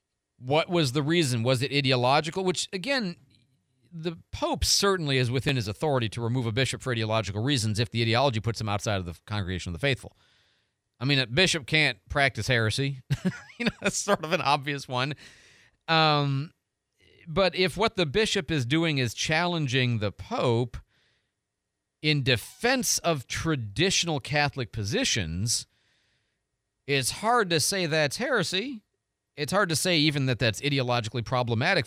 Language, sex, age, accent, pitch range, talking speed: English, male, 40-59, American, 115-150 Hz, 155 wpm